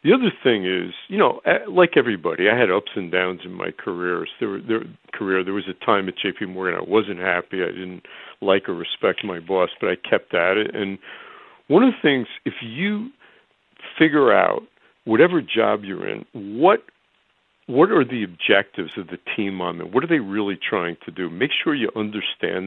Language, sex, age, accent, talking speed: English, male, 50-69, American, 200 wpm